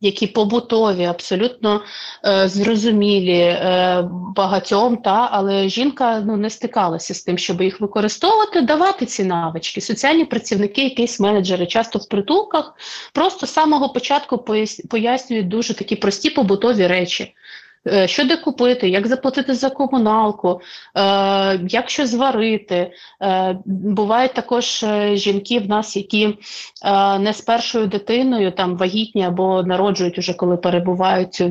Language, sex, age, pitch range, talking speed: Ukrainian, female, 30-49, 185-240 Hz, 125 wpm